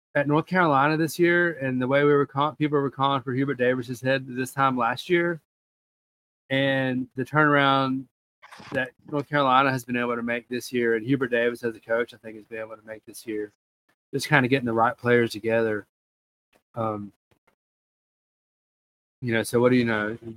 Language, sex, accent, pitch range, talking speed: English, male, American, 105-130 Hz, 195 wpm